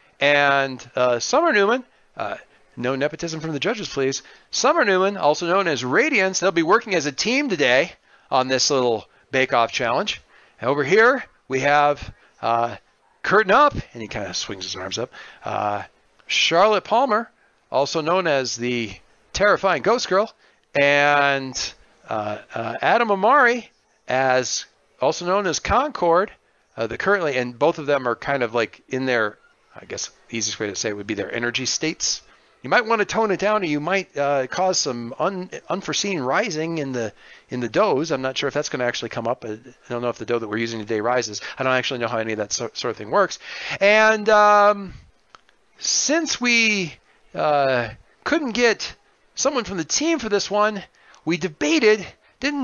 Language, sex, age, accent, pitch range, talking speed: English, male, 50-69, American, 125-210 Hz, 185 wpm